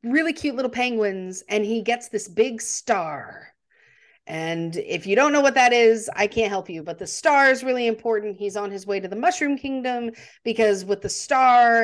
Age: 40-59